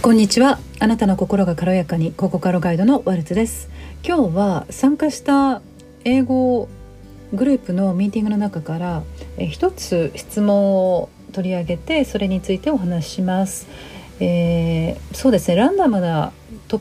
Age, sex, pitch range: 40-59, female, 165-235 Hz